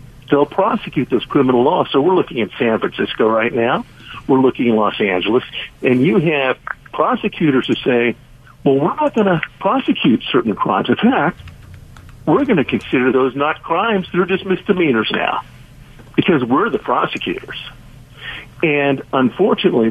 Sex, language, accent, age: male, English, American, 60-79